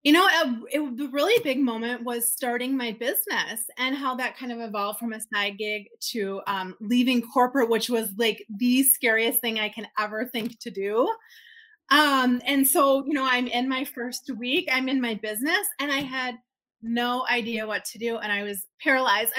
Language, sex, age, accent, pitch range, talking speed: English, female, 20-39, American, 230-315 Hz, 190 wpm